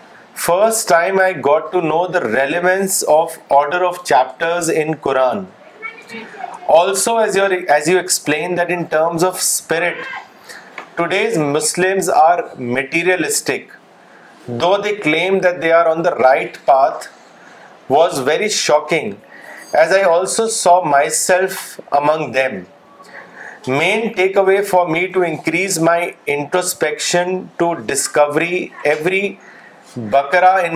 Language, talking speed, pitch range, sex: Urdu, 120 wpm, 155-185 Hz, male